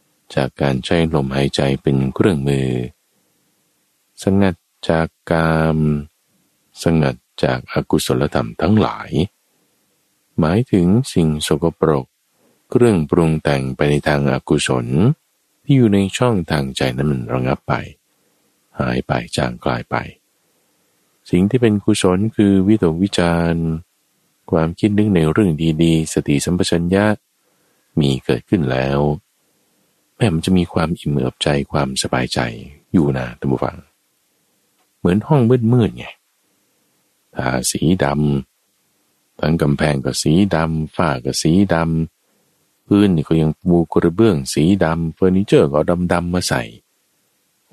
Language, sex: Thai, male